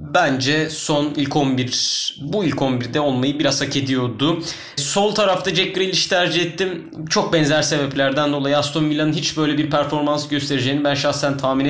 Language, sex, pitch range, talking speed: Turkish, male, 135-155 Hz, 160 wpm